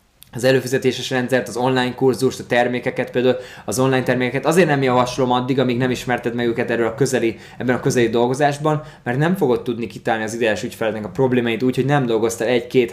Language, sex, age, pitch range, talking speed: Hungarian, male, 20-39, 120-140 Hz, 200 wpm